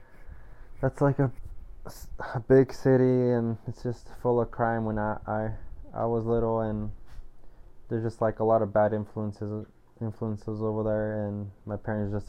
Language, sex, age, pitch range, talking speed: English, male, 20-39, 105-115 Hz, 165 wpm